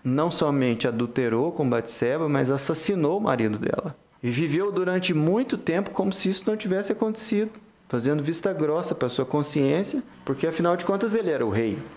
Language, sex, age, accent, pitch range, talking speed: Portuguese, male, 20-39, Brazilian, 125-165 Hz, 175 wpm